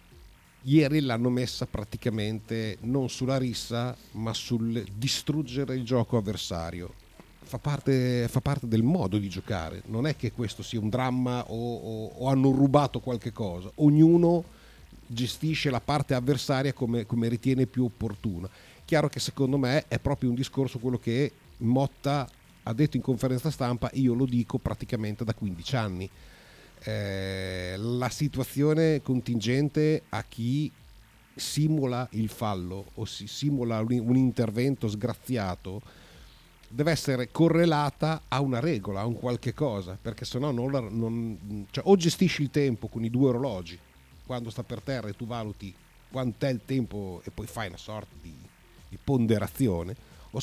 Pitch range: 110-135 Hz